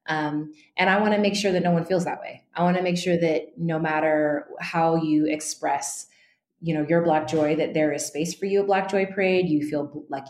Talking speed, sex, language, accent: 245 wpm, female, English, American